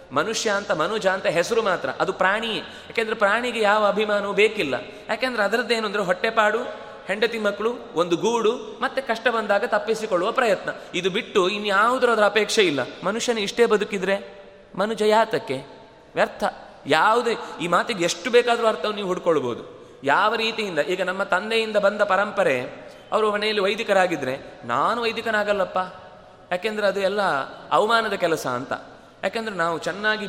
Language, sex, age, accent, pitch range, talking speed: Kannada, male, 20-39, native, 180-220 Hz, 135 wpm